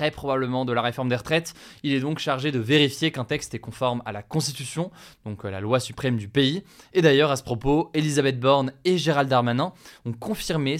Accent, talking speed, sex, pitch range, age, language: French, 210 wpm, male, 120-155 Hz, 20-39, French